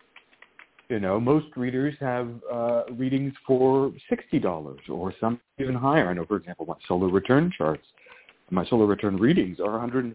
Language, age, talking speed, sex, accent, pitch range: English, 50-69, 170 wpm, male, American, 100-145 Hz